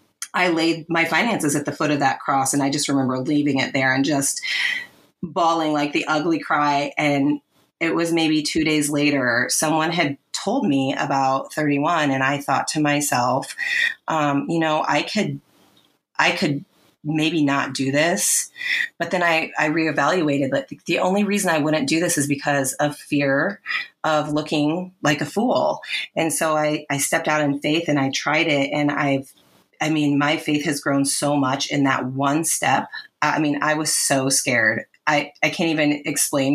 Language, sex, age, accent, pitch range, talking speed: English, female, 30-49, American, 140-160 Hz, 185 wpm